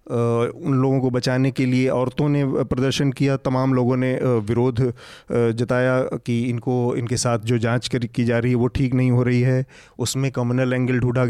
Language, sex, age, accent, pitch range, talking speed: English, male, 30-49, Indian, 120-155 Hz, 185 wpm